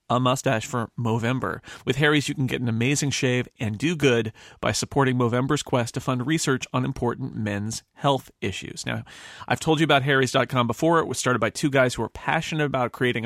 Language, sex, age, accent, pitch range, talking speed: English, male, 40-59, American, 120-140 Hz, 205 wpm